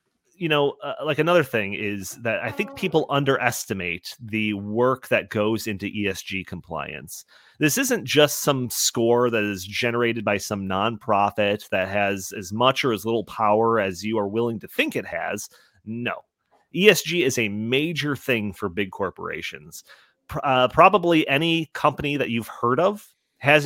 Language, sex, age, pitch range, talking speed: English, male, 30-49, 105-145 Hz, 160 wpm